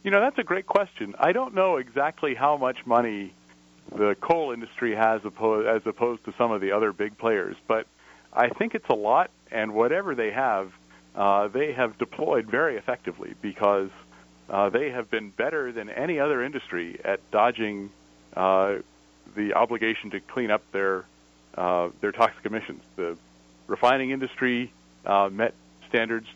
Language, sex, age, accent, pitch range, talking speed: English, male, 40-59, American, 80-115 Hz, 160 wpm